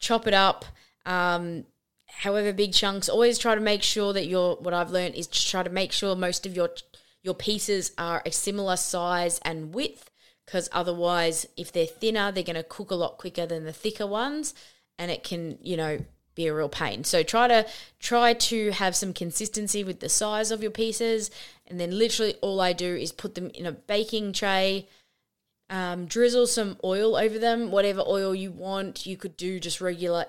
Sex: female